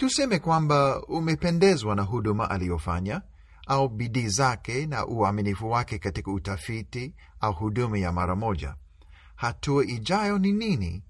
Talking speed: 125 wpm